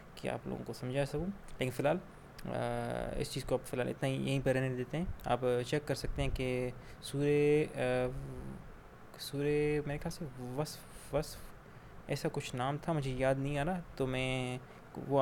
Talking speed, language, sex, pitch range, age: 175 wpm, Urdu, male, 130-150 Hz, 20-39